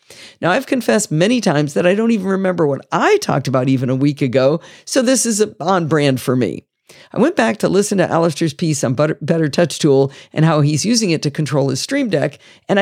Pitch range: 145-205 Hz